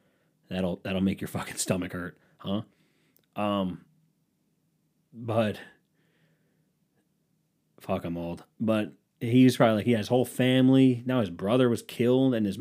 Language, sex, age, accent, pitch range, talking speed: English, male, 30-49, American, 105-145 Hz, 135 wpm